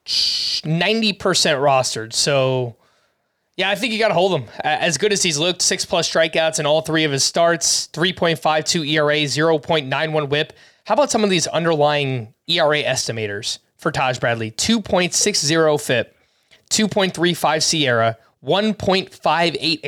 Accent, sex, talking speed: American, male, 130 wpm